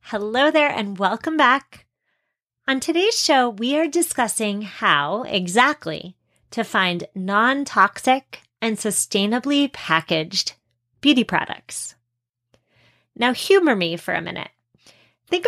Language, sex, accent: English, female, American